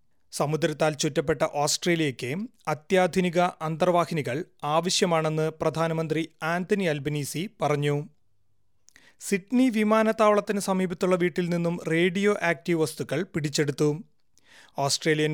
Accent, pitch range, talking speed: native, 150-175 Hz, 80 wpm